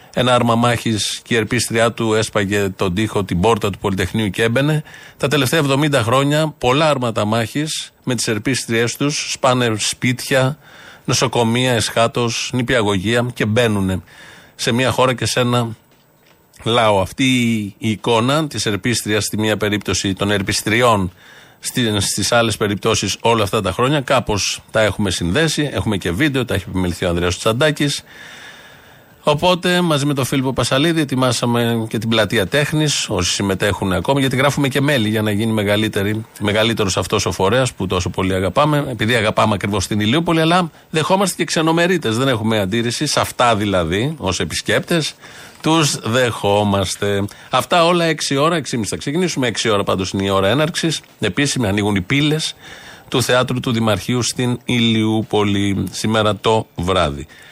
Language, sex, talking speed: Greek, male, 150 wpm